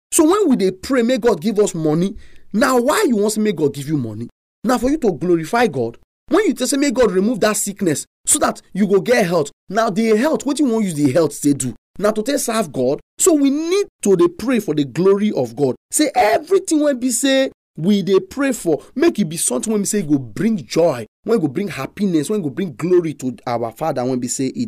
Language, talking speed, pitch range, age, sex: English, 250 wpm, 150-230 Hz, 30-49, male